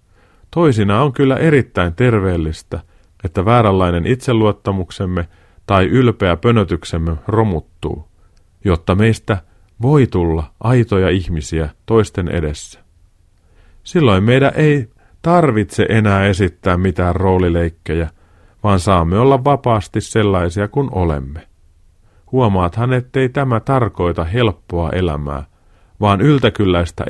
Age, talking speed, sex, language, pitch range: 40-59, 95 wpm, male, Finnish, 85-120 Hz